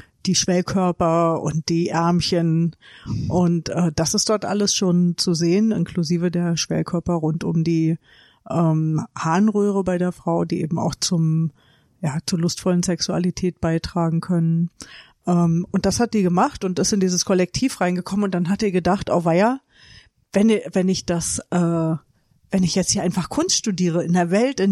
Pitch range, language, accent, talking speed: 170-200 Hz, German, German, 170 wpm